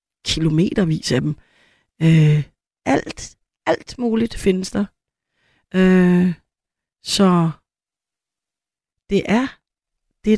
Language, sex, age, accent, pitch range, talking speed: Danish, female, 30-49, native, 165-215 Hz, 70 wpm